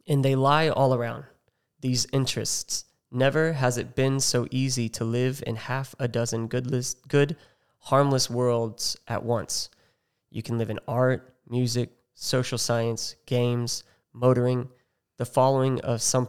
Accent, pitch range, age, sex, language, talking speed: American, 115-135 Hz, 20-39, male, English, 140 wpm